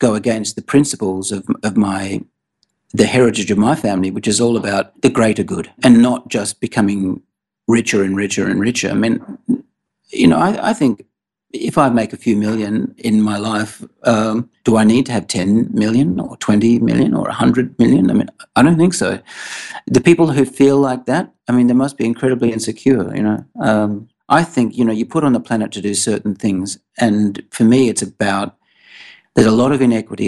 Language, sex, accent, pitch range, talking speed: English, male, Australian, 100-120 Hz, 205 wpm